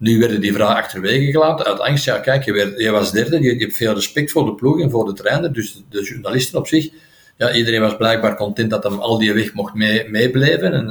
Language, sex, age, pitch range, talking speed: Dutch, male, 50-69, 105-135 Hz, 240 wpm